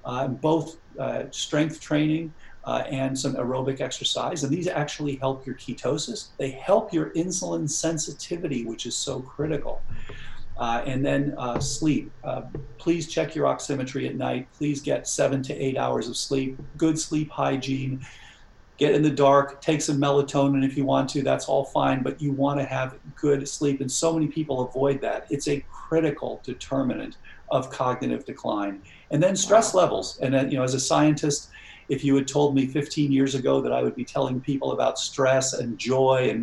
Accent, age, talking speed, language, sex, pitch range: American, 40-59, 185 wpm, English, male, 130-155 Hz